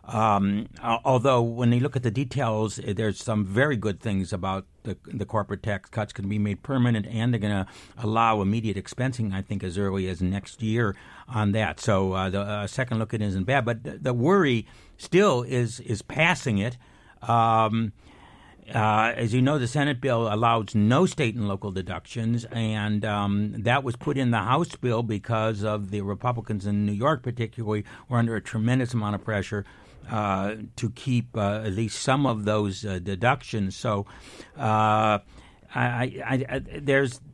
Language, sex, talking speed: English, male, 180 wpm